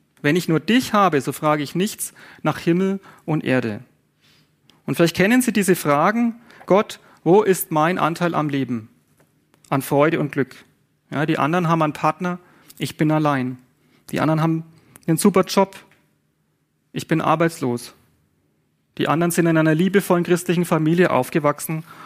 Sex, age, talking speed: male, 40-59, 155 wpm